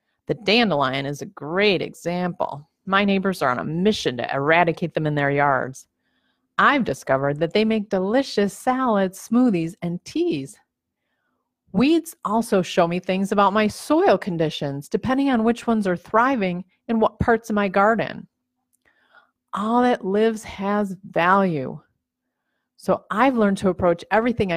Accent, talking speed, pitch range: American, 145 wpm, 170-225 Hz